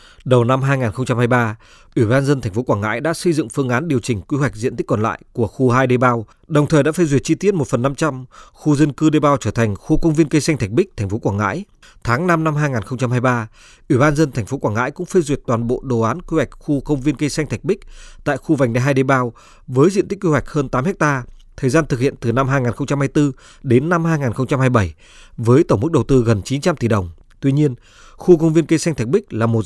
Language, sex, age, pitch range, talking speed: Vietnamese, male, 20-39, 120-150 Hz, 260 wpm